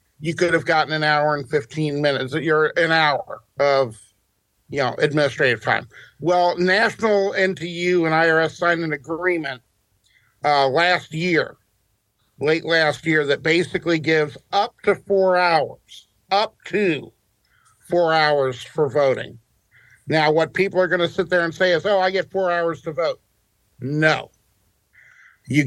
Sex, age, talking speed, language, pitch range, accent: male, 50-69, 150 wpm, English, 145-165 Hz, American